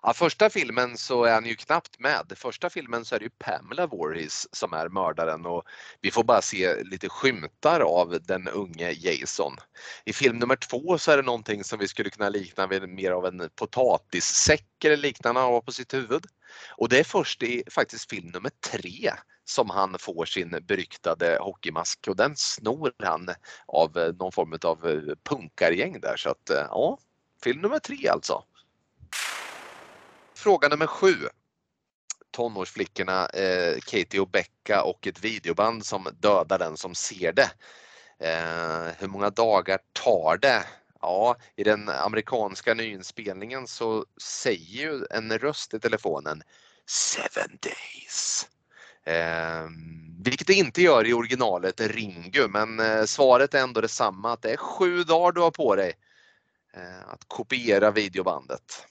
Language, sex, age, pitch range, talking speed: Swedish, male, 30-49, 95-145 Hz, 150 wpm